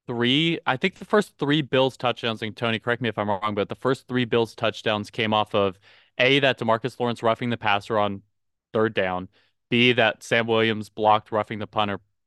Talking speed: 205 wpm